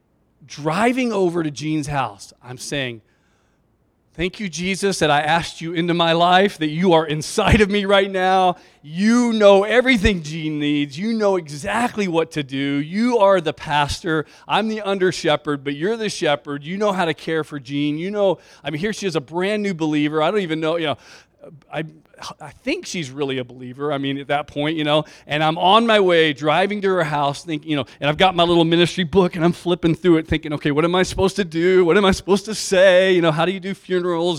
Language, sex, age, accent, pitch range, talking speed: English, male, 40-59, American, 145-190 Hz, 225 wpm